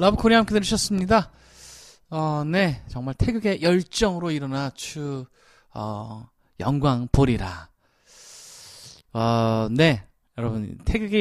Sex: male